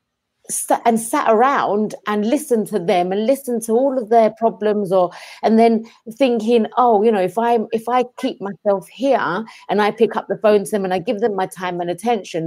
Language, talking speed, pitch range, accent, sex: English, 210 wpm, 195-255 Hz, British, female